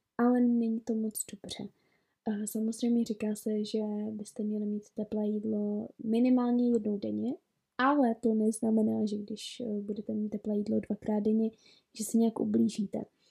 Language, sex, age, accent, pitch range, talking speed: Czech, female, 20-39, native, 215-240 Hz, 145 wpm